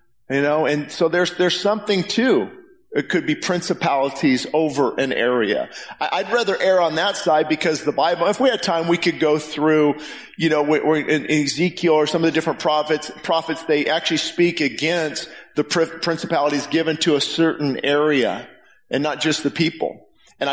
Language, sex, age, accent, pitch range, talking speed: English, male, 40-59, American, 145-175 Hz, 185 wpm